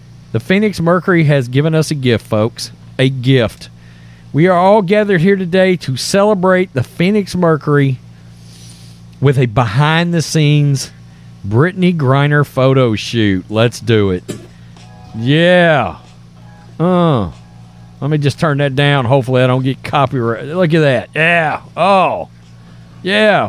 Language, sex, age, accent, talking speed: English, male, 40-59, American, 135 wpm